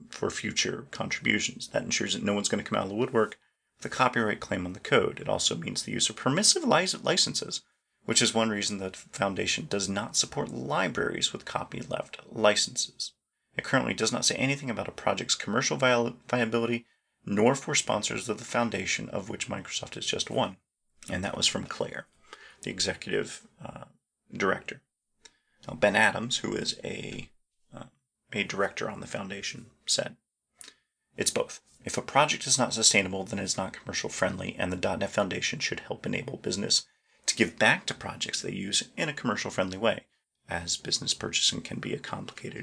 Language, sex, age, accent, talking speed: English, male, 30-49, American, 175 wpm